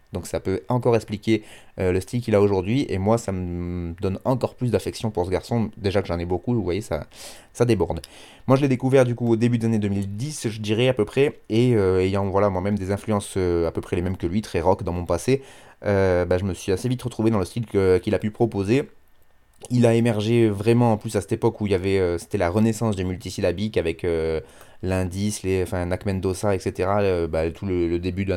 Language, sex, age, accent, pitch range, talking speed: French, male, 30-49, French, 95-115 Hz, 240 wpm